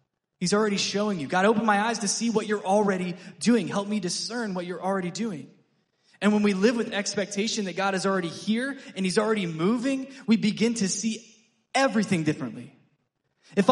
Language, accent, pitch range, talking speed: English, American, 175-225 Hz, 190 wpm